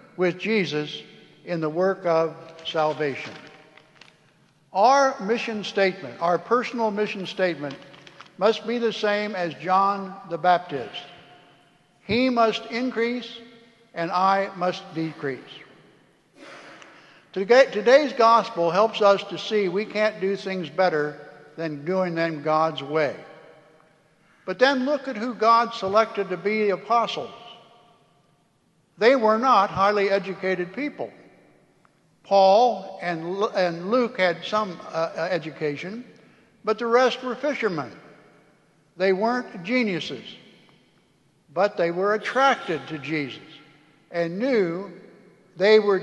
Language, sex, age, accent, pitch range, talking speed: English, male, 60-79, American, 165-225 Hz, 110 wpm